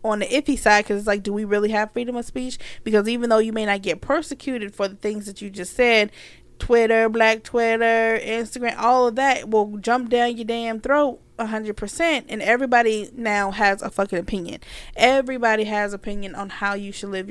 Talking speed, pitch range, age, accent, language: 210 wpm, 200-235 Hz, 20-39, American, English